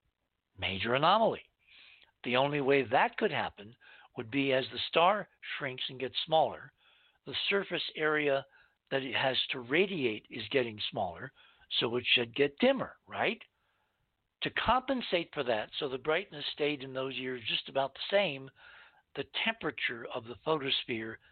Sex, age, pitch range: male, 60-79, 120-150 Hz